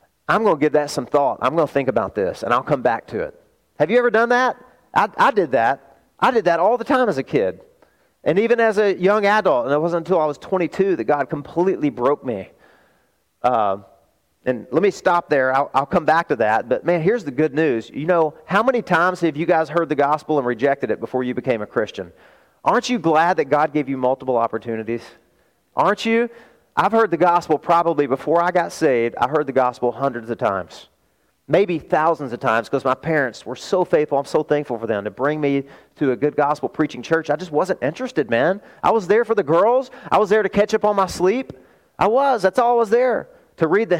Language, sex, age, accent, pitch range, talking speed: English, male, 40-59, American, 140-200 Hz, 235 wpm